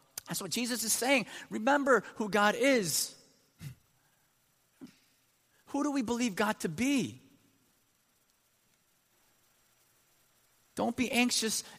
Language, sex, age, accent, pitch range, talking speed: English, male, 30-49, American, 170-230 Hz, 95 wpm